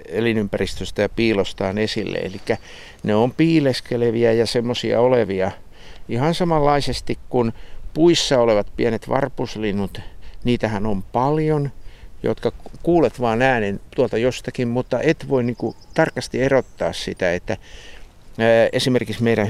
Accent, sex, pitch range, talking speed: native, male, 105-125 Hz, 115 wpm